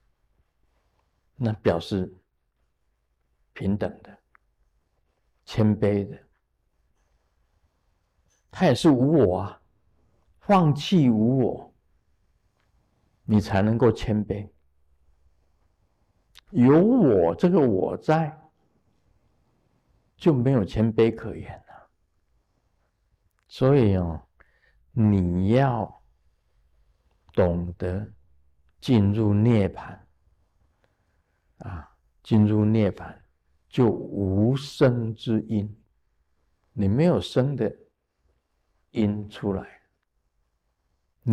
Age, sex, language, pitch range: 50-69, male, Chinese, 75-110 Hz